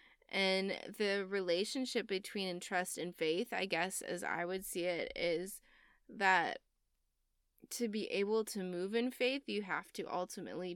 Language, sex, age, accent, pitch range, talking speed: English, female, 20-39, American, 180-220 Hz, 150 wpm